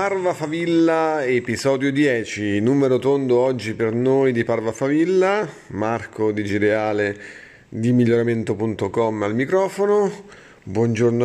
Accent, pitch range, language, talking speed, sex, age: native, 110-135 Hz, Italian, 105 wpm, male, 30-49